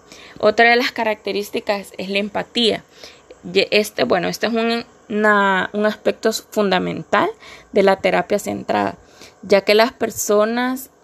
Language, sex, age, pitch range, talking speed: Spanish, female, 20-39, 190-220 Hz, 120 wpm